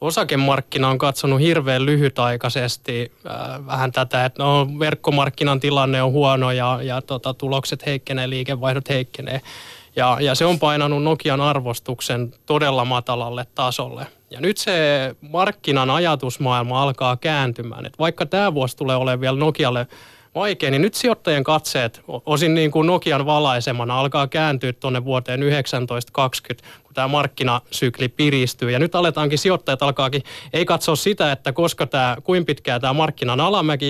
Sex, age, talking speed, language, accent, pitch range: male, 20-39, 140 wpm, Finnish, native, 125-150 Hz